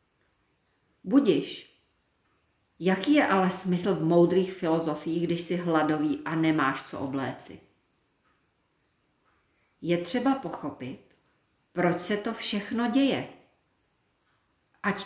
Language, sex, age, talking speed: Czech, female, 40-59, 95 wpm